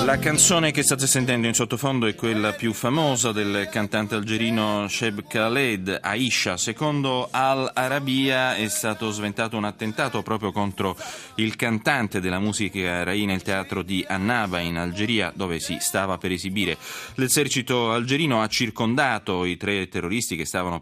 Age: 30-49